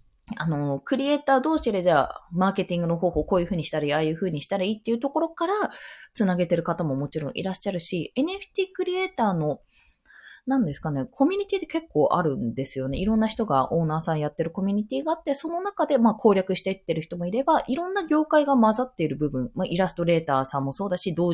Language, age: Japanese, 20-39